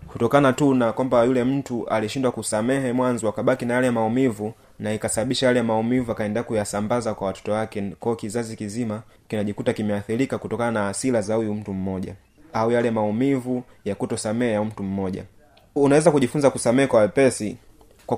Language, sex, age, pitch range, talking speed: Swahili, male, 30-49, 110-130 Hz, 155 wpm